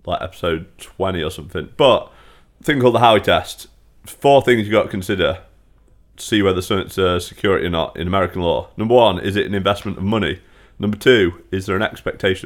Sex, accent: male, British